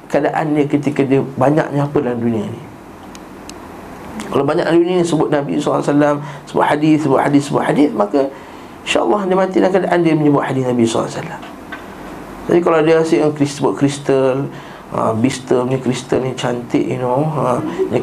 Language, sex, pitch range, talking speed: Malay, male, 135-170 Hz, 165 wpm